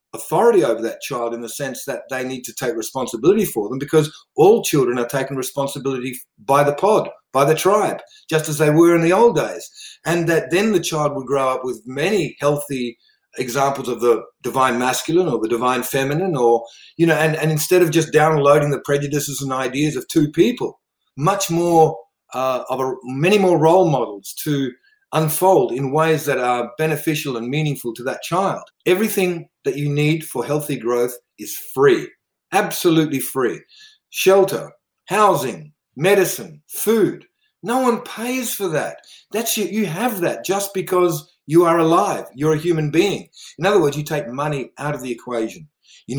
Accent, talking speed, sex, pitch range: Australian, 180 wpm, male, 135-185 Hz